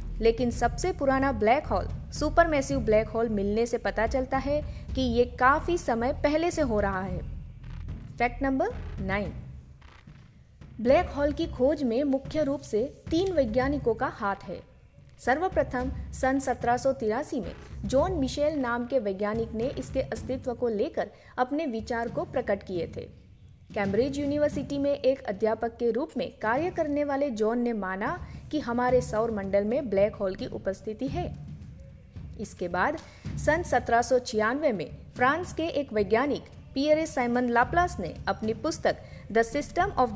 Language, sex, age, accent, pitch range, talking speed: Hindi, female, 20-39, native, 225-290 Hz, 130 wpm